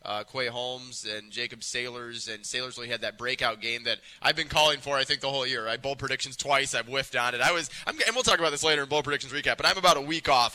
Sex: male